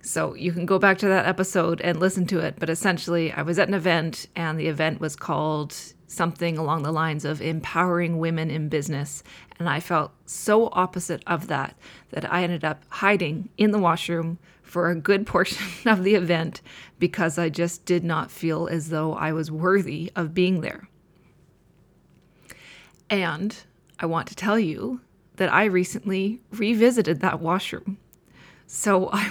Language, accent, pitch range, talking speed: English, American, 165-190 Hz, 170 wpm